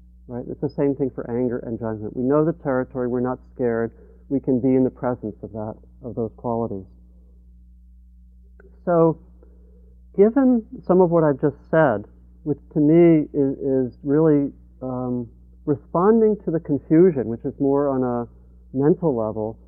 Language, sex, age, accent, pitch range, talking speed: English, male, 50-69, American, 110-155 Hz, 160 wpm